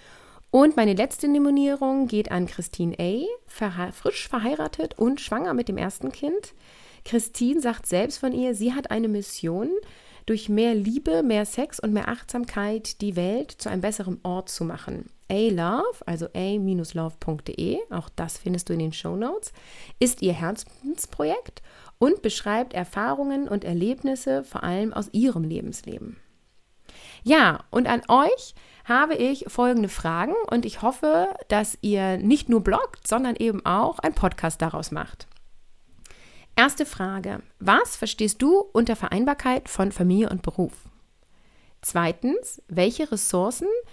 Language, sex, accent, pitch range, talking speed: German, female, German, 190-265 Hz, 140 wpm